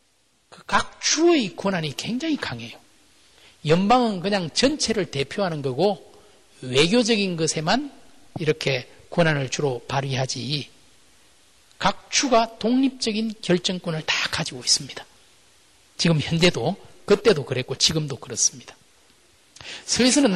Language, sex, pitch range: Korean, male, 155-235 Hz